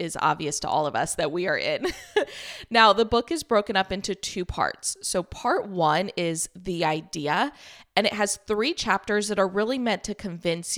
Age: 20-39